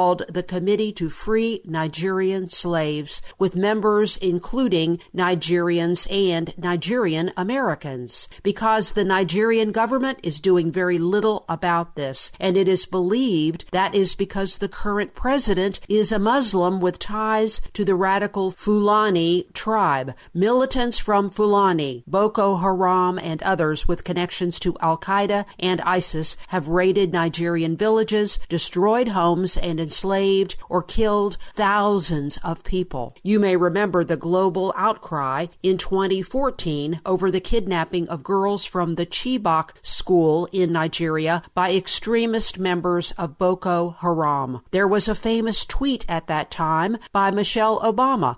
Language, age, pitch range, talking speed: English, 50-69, 170-205 Hz, 130 wpm